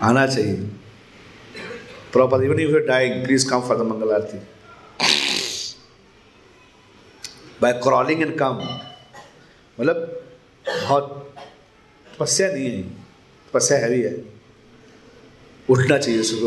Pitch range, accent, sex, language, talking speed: 115-160 Hz, native, male, Hindi, 100 wpm